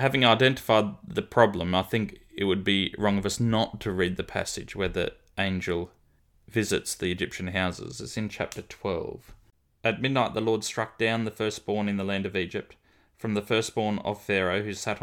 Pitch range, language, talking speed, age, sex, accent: 95-115 Hz, English, 190 wpm, 20-39, male, Australian